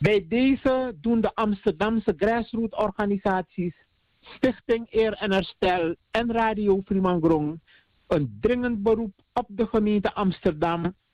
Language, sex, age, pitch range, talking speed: Dutch, male, 60-79, 195-235 Hz, 110 wpm